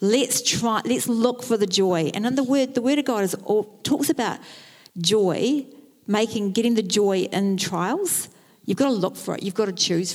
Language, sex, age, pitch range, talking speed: English, female, 50-69, 180-260 Hz, 200 wpm